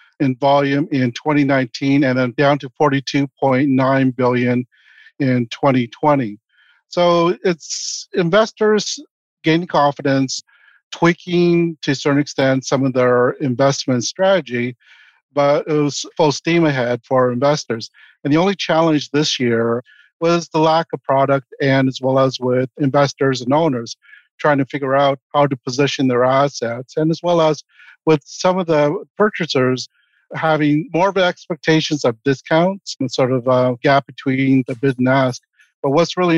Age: 50-69